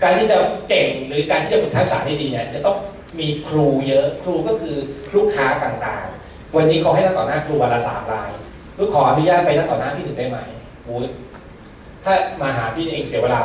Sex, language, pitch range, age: male, Thai, 120-155 Hz, 20-39